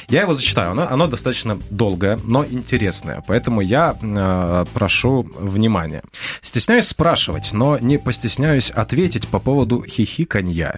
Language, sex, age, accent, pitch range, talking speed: Russian, male, 20-39, native, 105-130 Hz, 130 wpm